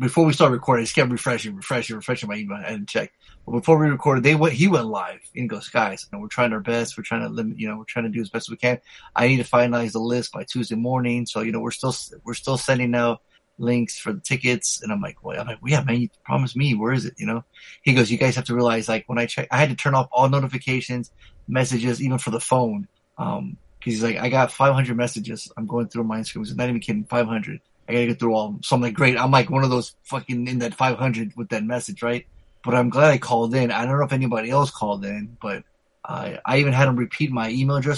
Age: 30-49